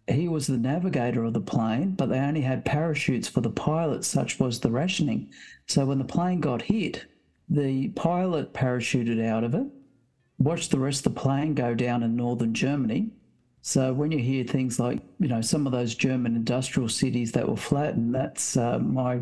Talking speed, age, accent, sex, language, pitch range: 195 wpm, 60-79, Australian, male, English, 125-145 Hz